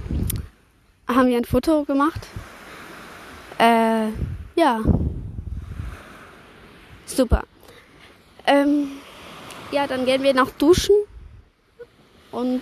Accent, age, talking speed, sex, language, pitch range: German, 20-39, 75 wpm, female, German, 225-265 Hz